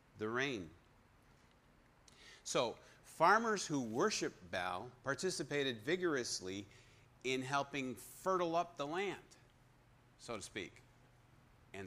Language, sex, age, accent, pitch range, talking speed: English, male, 50-69, American, 120-135 Hz, 95 wpm